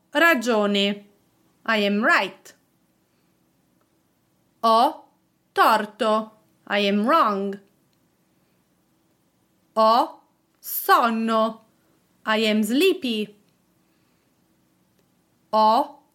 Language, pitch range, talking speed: English, 205-265 Hz, 55 wpm